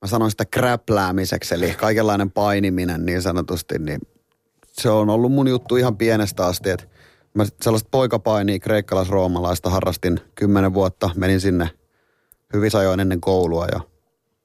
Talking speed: 140 wpm